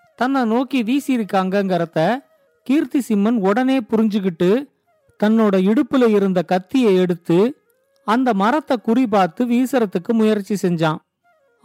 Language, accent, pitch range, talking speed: Tamil, native, 200-260 Hz, 100 wpm